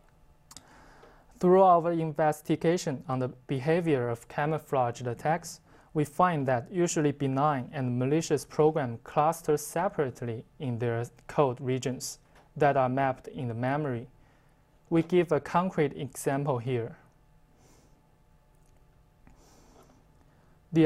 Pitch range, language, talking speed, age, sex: 130-155 Hz, English, 105 wpm, 20-39, male